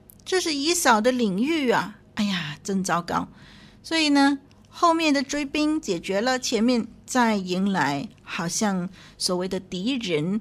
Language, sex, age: Chinese, female, 50-69